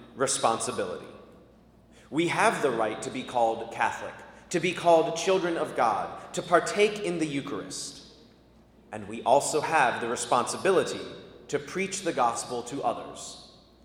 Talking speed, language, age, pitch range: 140 wpm, English, 30-49, 125-170 Hz